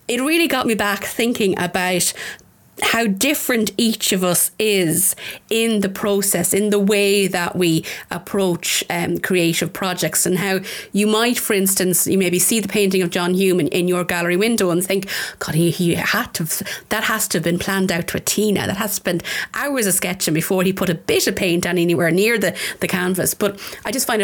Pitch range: 180-220 Hz